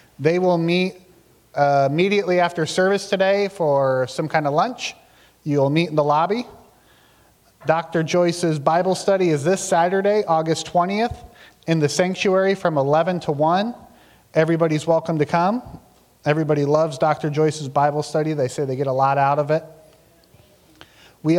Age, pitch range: 30-49, 145-175 Hz